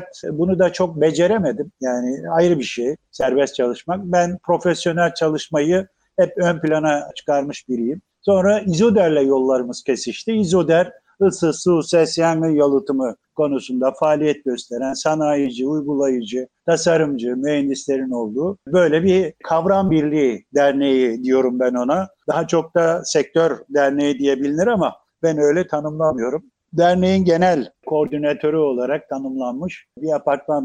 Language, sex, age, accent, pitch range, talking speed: Turkish, male, 50-69, native, 140-175 Hz, 120 wpm